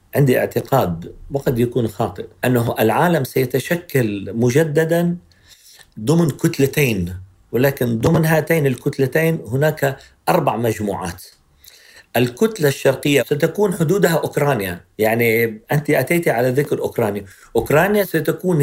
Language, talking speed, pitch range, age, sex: Arabic, 100 wpm, 115-160 Hz, 50-69, male